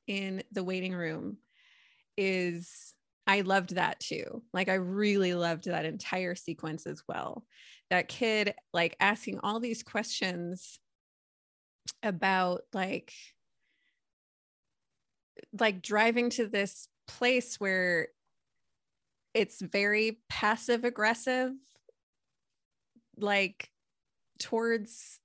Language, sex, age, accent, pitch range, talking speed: English, female, 20-39, American, 175-215 Hz, 95 wpm